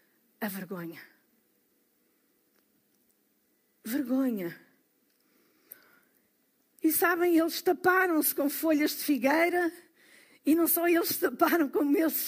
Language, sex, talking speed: Portuguese, female, 95 wpm